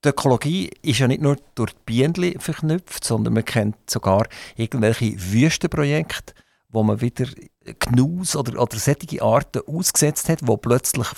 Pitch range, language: 120-150 Hz, German